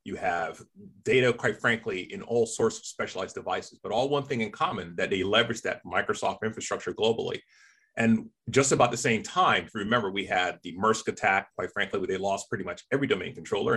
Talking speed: 200 wpm